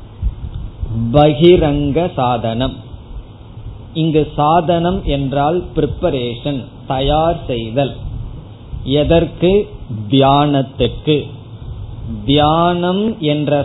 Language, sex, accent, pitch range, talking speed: Tamil, male, native, 115-165 Hz, 55 wpm